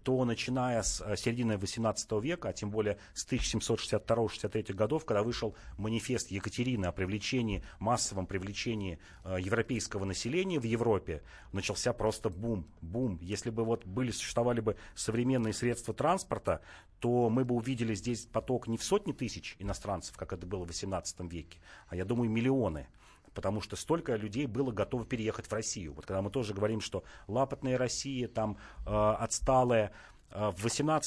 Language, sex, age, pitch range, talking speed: Russian, male, 40-59, 100-125 Hz, 150 wpm